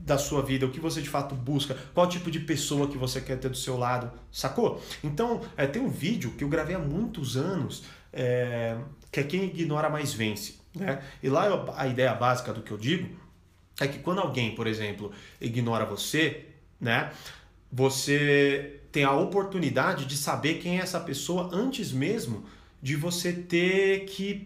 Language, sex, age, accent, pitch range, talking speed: Portuguese, male, 30-49, Brazilian, 130-165 Hz, 175 wpm